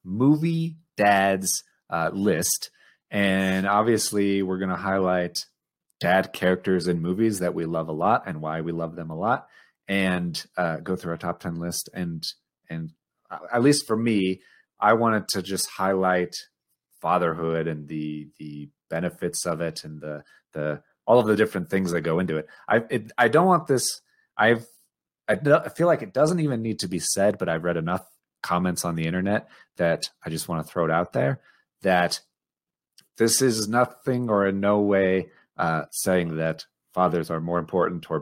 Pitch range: 85-105 Hz